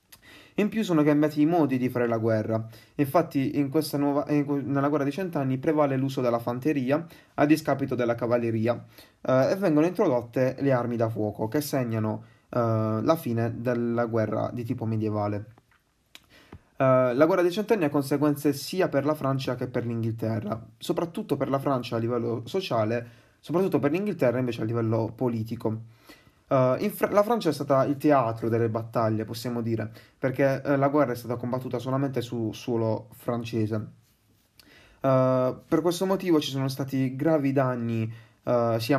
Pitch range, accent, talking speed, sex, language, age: 115-145 Hz, native, 165 wpm, male, Italian, 20-39